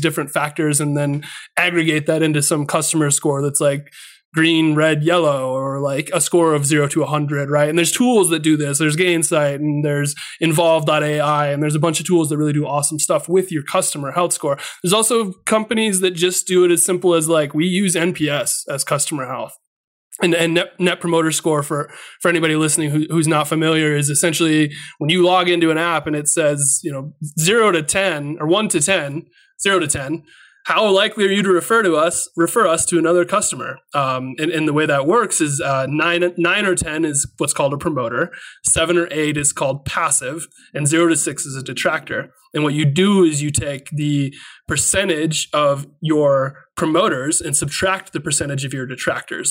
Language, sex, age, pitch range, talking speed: English, male, 20-39, 145-170 Hz, 205 wpm